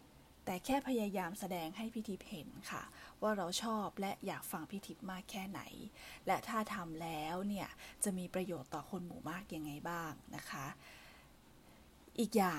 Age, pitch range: 20-39, 175-215 Hz